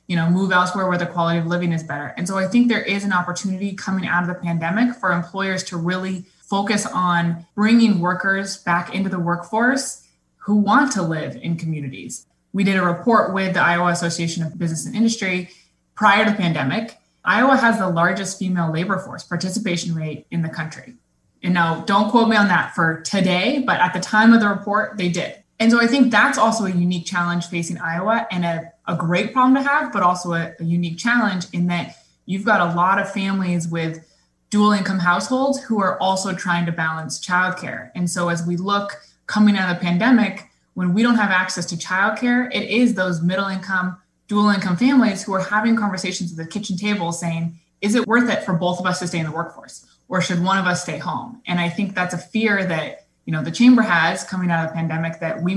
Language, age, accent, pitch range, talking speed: English, 20-39, American, 175-210 Hz, 220 wpm